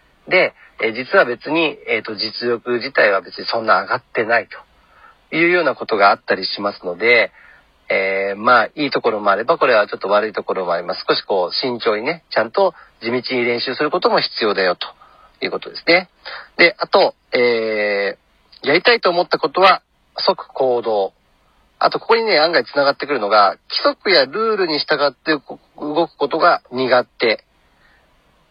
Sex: male